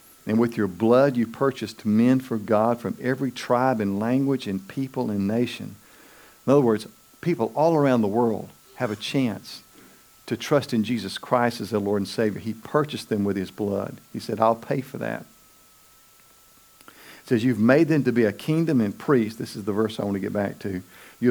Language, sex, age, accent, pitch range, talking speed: English, male, 50-69, American, 110-140 Hz, 205 wpm